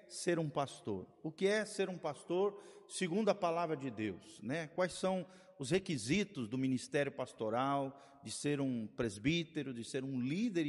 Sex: male